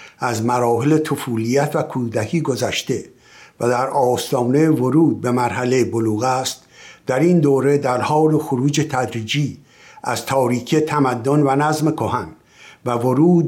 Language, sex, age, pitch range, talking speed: Persian, male, 60-79, 115-140 Hz, 130 wpm